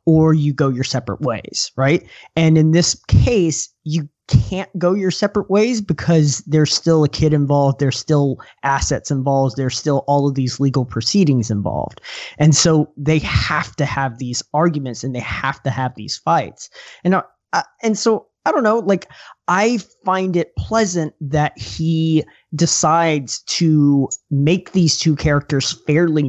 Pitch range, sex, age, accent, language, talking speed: 140-175 Hz, male, 20-39, American, English, 165 wpm